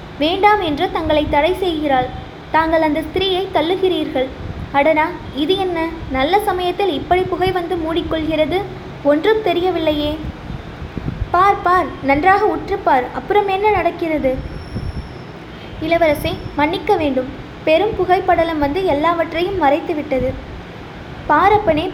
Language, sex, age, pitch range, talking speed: Tamil, female, 20-39, 300-370 Hz, 100 wpm